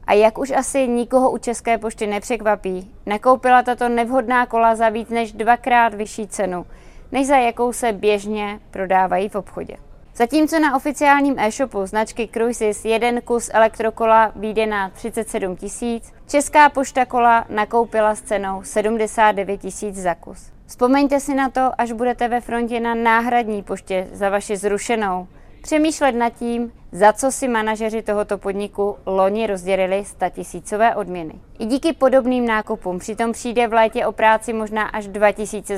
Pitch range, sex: 205-240 Hz, female